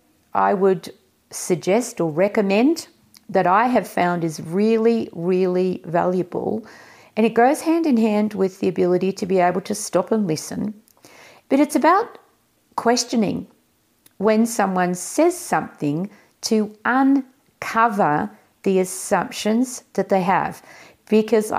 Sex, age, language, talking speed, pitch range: female, 50-69, English, 125 wpm, 180-235 Hz